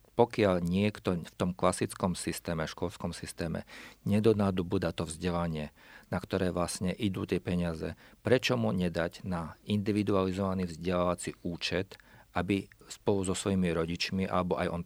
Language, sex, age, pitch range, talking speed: Slovak, male, 50-69, 90-105 Hz, 135 wpm